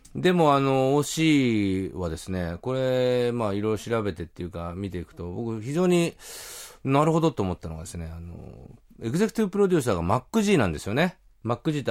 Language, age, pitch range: Japanese, 30-49, 90-130 Hz